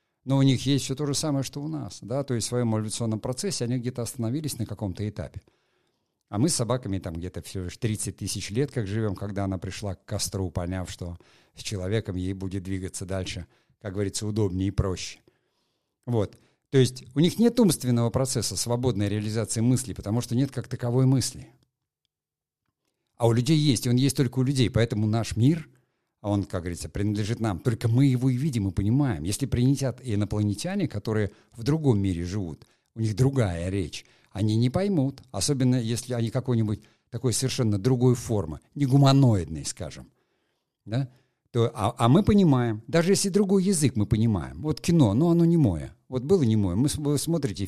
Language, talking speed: Russian, 185 wpm